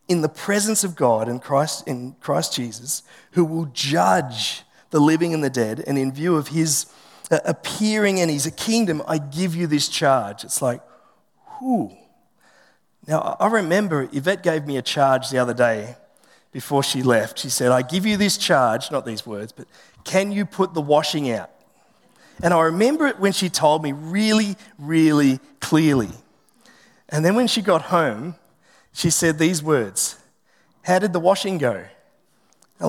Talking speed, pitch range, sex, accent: 170 wpm, 150-205 Hz, male, Australian